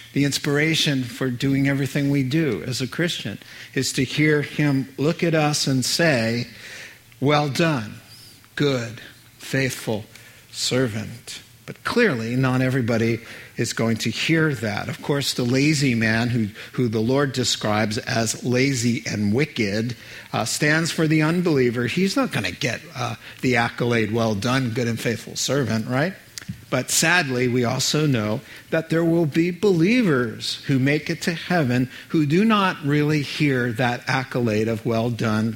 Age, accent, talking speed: 50-69, American, 155 wpm